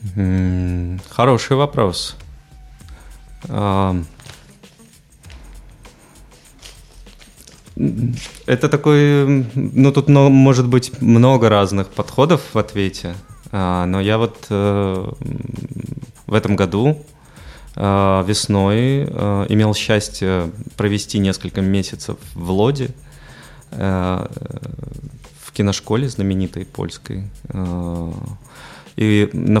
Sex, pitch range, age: male, 95-125 Hz, 20-39